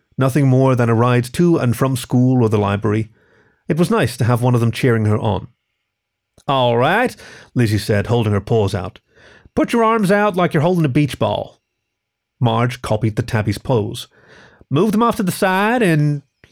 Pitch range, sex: 115-155 Hz, male